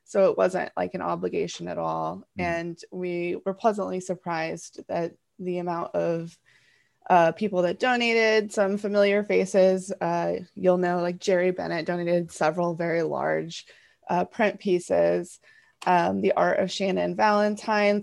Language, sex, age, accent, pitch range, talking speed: English, female, 20-39, American, 175-210 Hz, 145 wpm